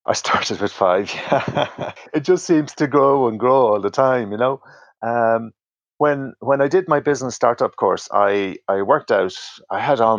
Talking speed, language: 190 wpm, English